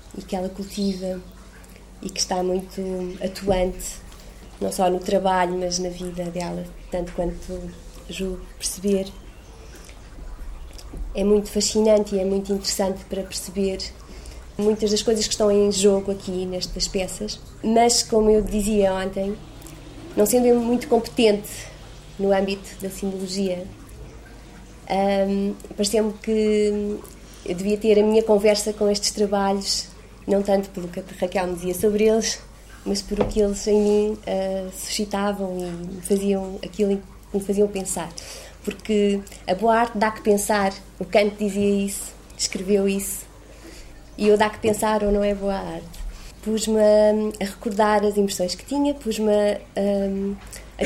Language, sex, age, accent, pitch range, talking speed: Portuguese, female, 20-39, Brazilian, 190-215 Hz, 145 wpm